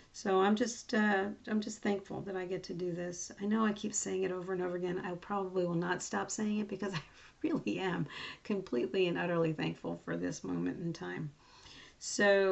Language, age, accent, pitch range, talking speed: English, 40-59, American, 175-210 Hz, 210 wpm